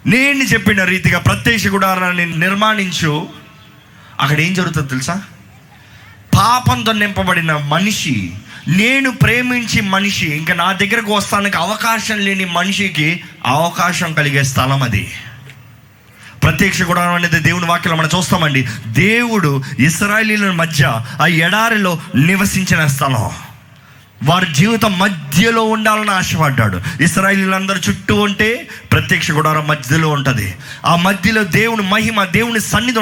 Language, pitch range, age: Telugu, 140-200 Hz, 20-39